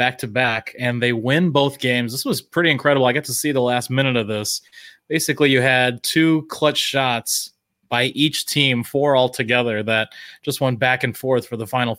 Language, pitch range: English, 120-145 Hz